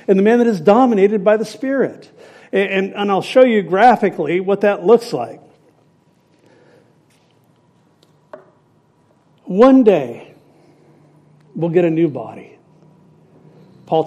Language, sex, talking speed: English, male, 120 wpm